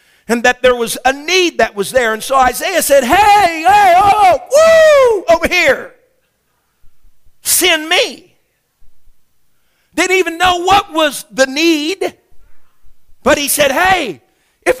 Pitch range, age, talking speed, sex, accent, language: 245-350 Hz, 50-69, 135 wpm, male, American, English